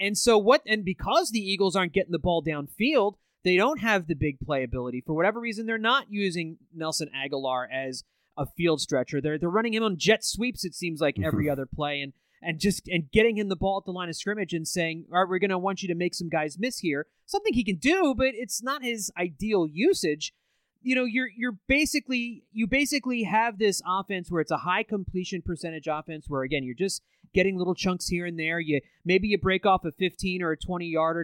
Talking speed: 225 wpm